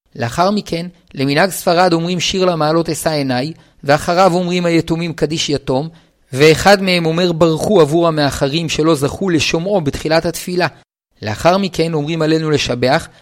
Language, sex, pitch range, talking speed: Hebrew, male, 150-185 Hz, 135 wpm